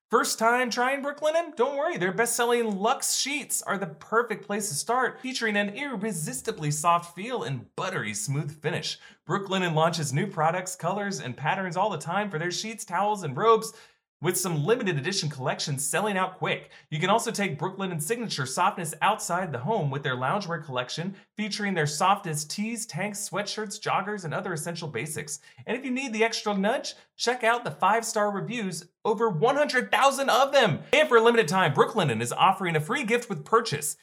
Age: 30-49